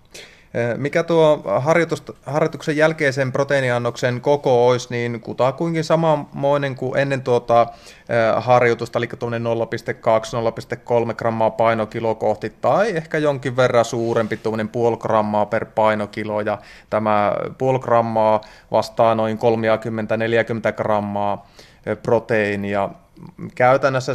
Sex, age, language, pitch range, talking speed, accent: male, 30-49, Finnish, 110-130 Hz, 90 wpm, native